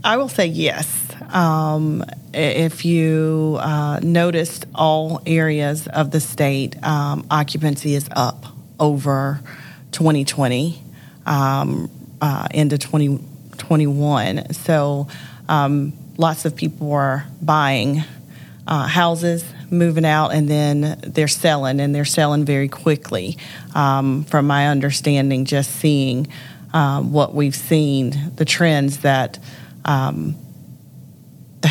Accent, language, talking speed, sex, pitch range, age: American, English, 110 wpm, female, 135-155 Hz, 40-59